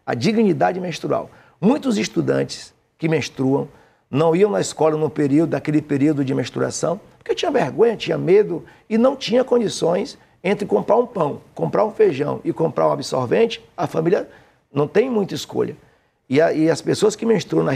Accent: Brazilian